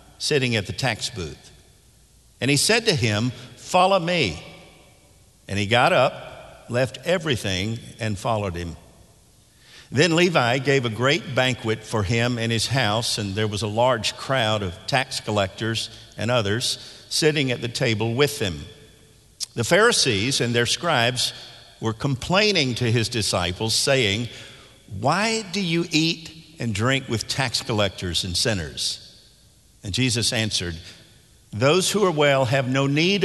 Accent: American